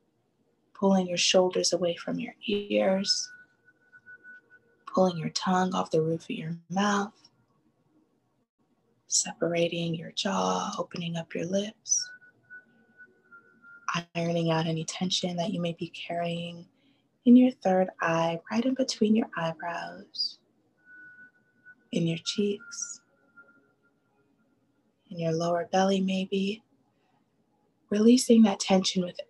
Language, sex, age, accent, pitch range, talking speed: English, female, 20-39, American, 175-245 Hz, 110 wpm